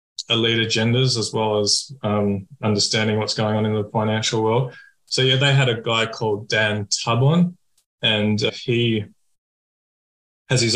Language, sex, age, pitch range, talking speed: English, male, 20-39, 105-120 Hz, 155 wpm